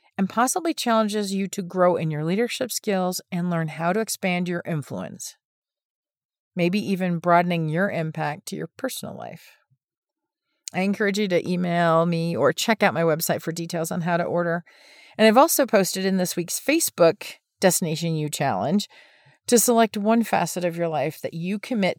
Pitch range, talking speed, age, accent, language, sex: 165-215 Hz, 175 wpm, 40-59, American, English, female